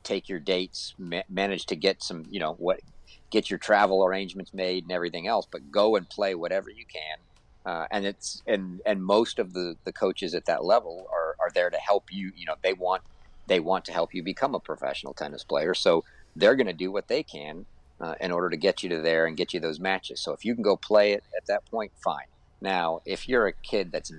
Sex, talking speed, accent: male, 240 wpm, American